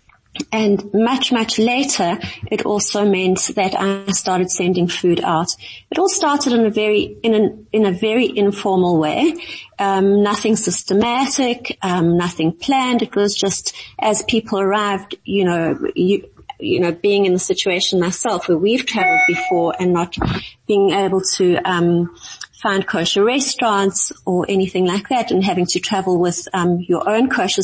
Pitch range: 185-230 Hz